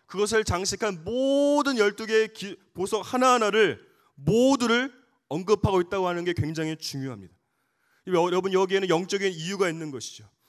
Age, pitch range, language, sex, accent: 30-49, 160-200 Hz, Korean, male, native